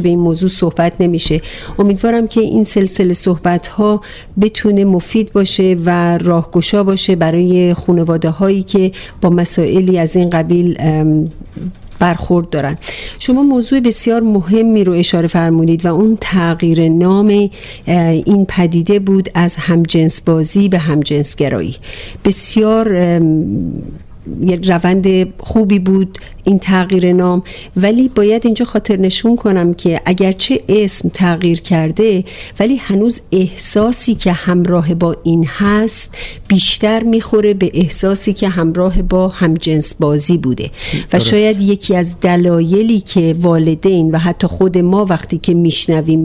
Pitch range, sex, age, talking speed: 170-205 Hz, female, 50-69, 130 wpm